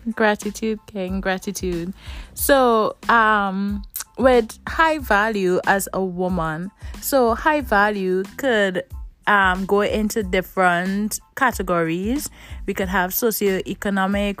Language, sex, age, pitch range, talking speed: English, female, 20-39, 185-225 Hz, 100 wpm